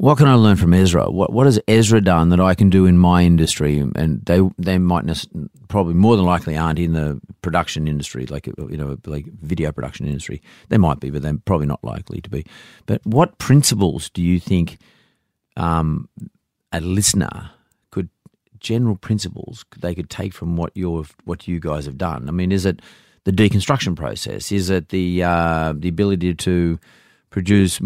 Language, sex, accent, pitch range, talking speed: English, male, Australian, 80-95 Hz, 185 wpm